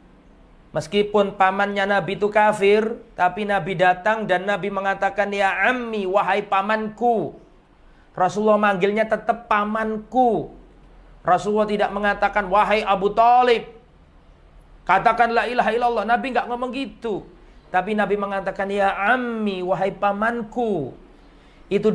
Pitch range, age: 180-225 Hz, 40-59